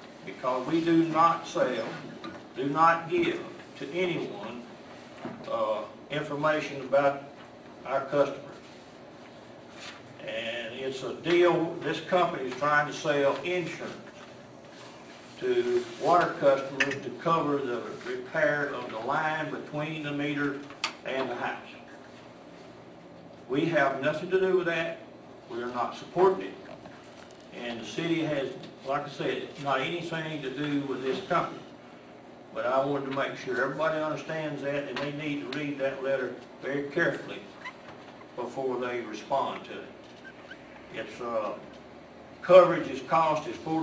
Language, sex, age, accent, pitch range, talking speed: English, male, 50-69, American, 135-165 Hz, 135 wpm